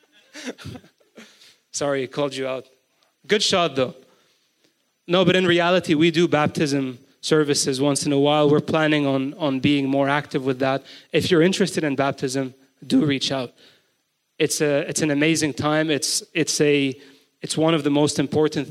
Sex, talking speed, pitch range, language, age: male, 165 wpm, 135-155 Hz, English, 30-49